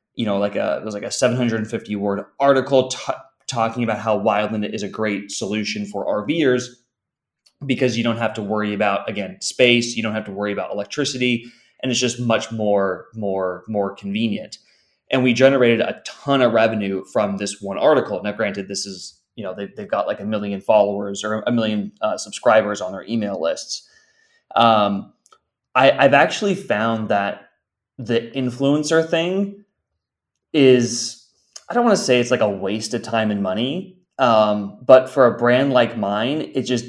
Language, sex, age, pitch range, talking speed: English, male, 20-39, 105-125 Hz, 180 wpm